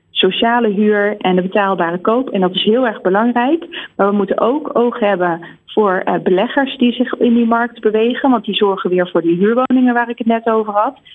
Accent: Dutch